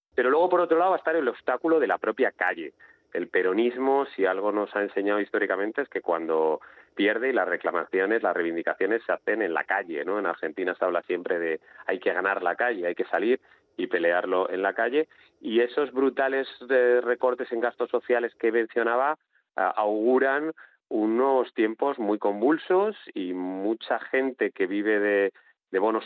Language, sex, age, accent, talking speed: Spanish, male, 30-49, Spanish, 175 wpm